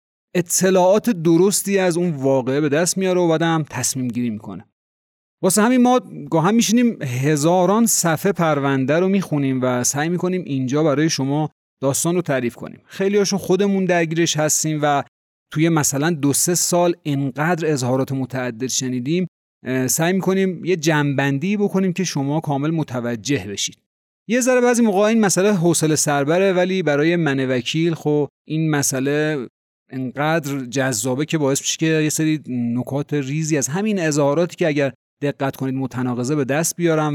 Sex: male